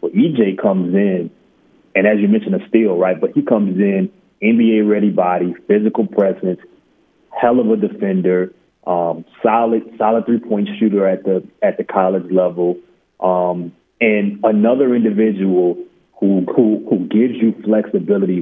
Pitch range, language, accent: 95-130 Hz, English, American